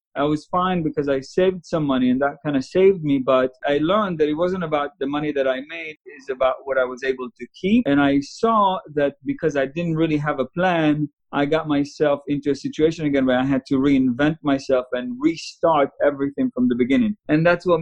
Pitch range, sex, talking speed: 135-165 Hz, male, 225 wpm